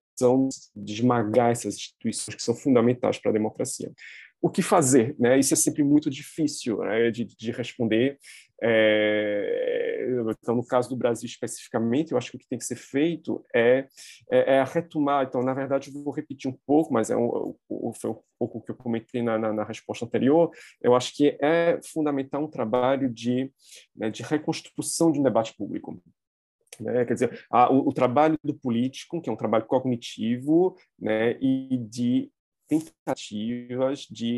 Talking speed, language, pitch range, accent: 175 wpm, Portuguese, 115-140 Hz, Brazilian